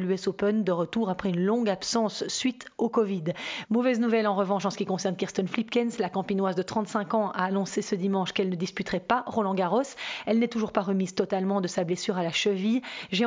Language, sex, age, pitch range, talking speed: French, female, 30-49, 190-225 Hz, 215 wpm